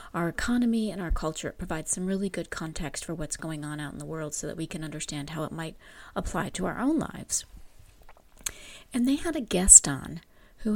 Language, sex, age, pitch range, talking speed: English, female, 30-49, 160-210 Hz, 215 wpm